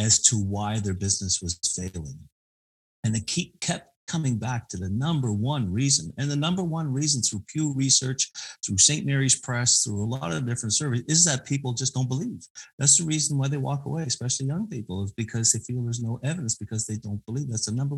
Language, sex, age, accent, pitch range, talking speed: English, male, 50-69, American, 110-140 Hz, 215 wpm